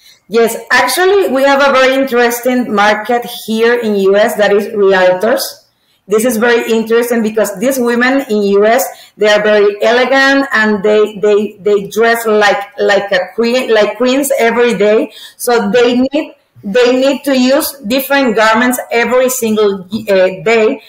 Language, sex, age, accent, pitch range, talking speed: English, female, 30-49, Mexican, 205-245 Hz, 150 wpm